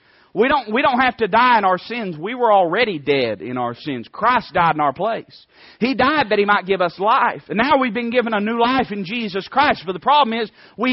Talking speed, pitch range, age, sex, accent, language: 255 wpm, 175-255 Hz, 40-59, male, American, English